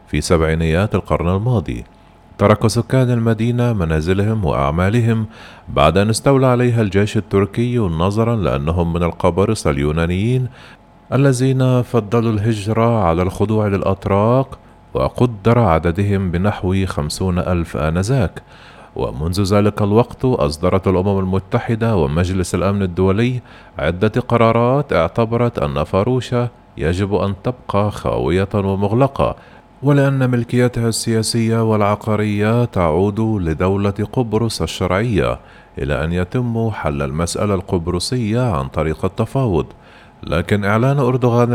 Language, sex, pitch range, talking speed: Arabic, male, 90-120 Hz, 105 wpm